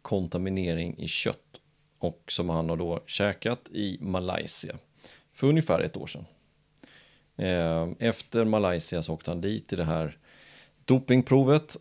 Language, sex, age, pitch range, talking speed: Swedish, male, 30-49, 85-125 Hz, 130 wpm